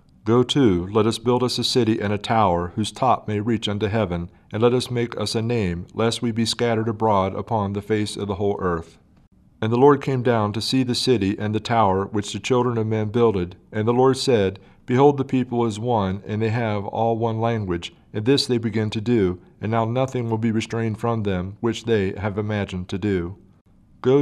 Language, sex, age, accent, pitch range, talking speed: English, male, 40-59, American, 100-115 Hz, 225 wpm